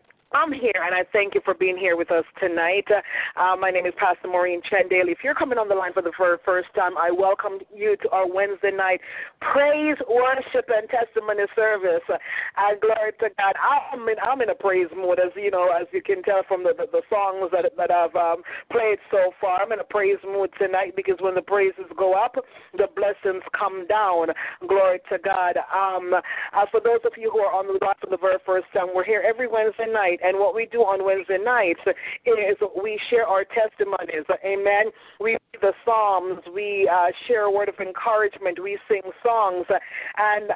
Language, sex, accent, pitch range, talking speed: English, female, American, 185-220 Hz, 205 wpm